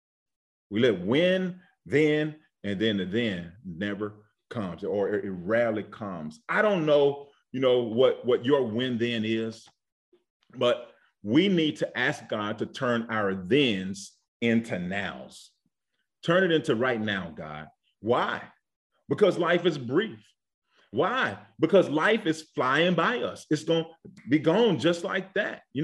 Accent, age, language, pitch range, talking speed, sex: American, 40-59, English, 115-180 Hz, 150 wpm, male